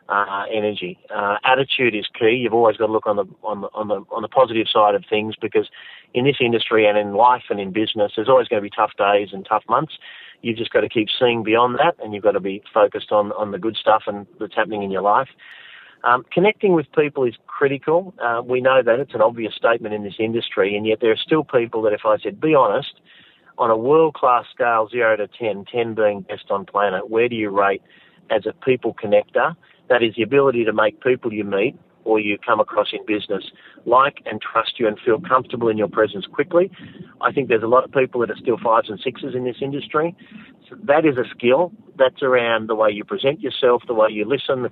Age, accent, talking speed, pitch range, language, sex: 40-59, Australian, 240 wpm, 110-140 Hz, English, male